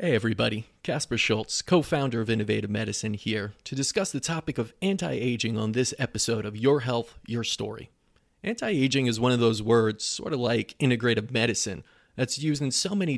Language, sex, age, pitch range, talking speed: English, male, 30-49, 110-135 Hz, 180 wpm